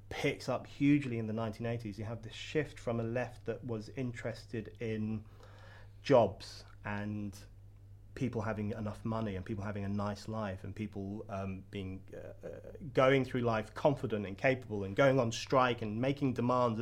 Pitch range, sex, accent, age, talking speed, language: 105-130 Hz, male, British, 30-49, 170 wpm, English